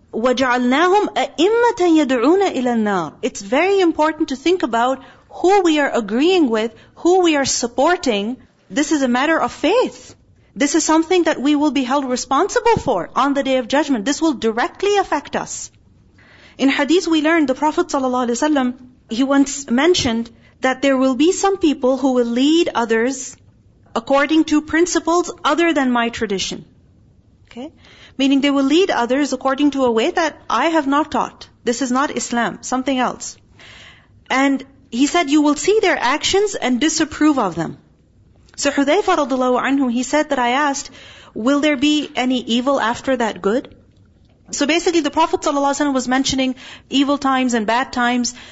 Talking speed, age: 160 wpm, 40-59